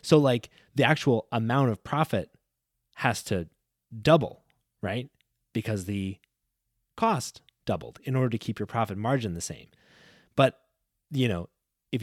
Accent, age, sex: American, 20-39, male